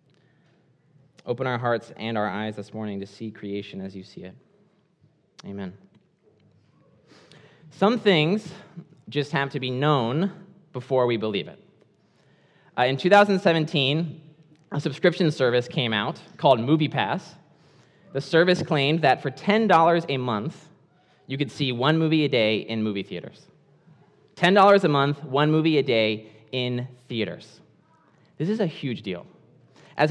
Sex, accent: male, American